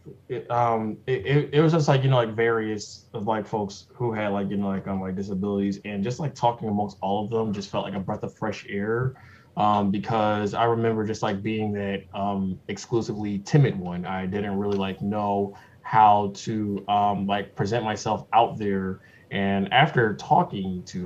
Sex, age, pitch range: male, 20-39, 100-125 Hz